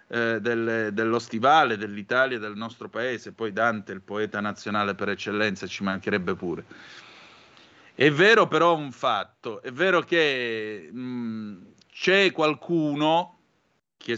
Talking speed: 125 wpm